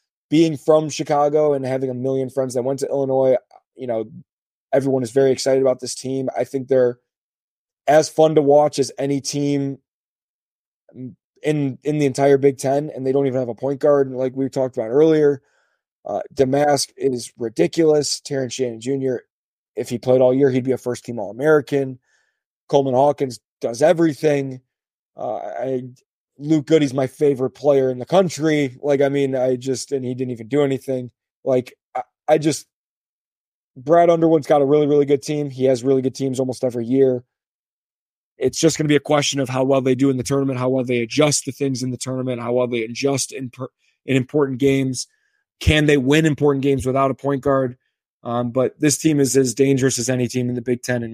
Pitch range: 130-145 Hz